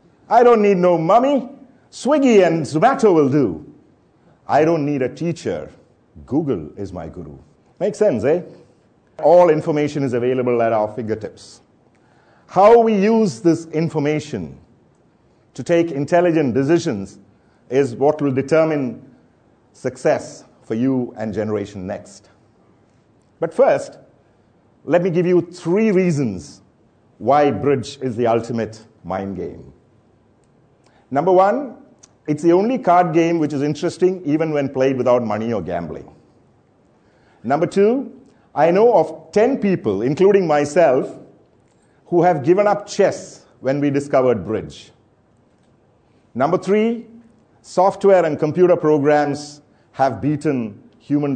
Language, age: English, 50-69